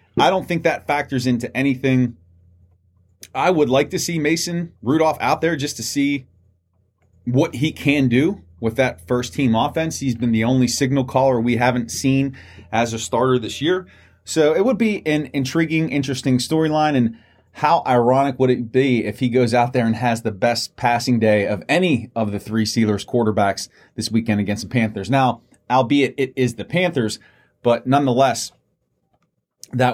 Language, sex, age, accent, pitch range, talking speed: English, male, 30-49, American, 110-145 Hz, 175 wpm